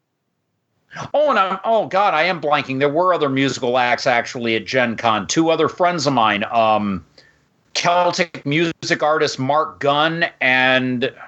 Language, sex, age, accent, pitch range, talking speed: English, male, 40-59, American, 120-155 Hz, 155 wpm